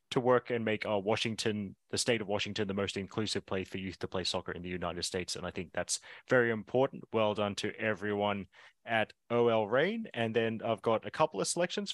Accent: Australian